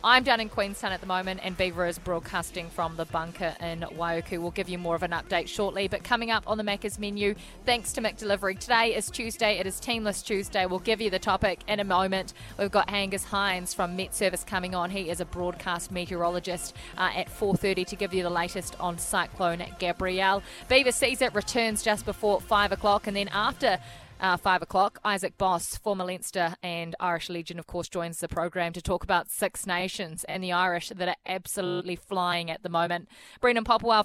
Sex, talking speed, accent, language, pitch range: female, 205 wpm, Australian, English, 175-205 Hz